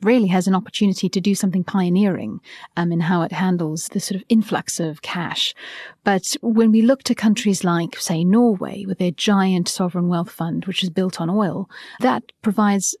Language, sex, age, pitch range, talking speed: English, female, 30-49, 170-200 Hz, 190 wpm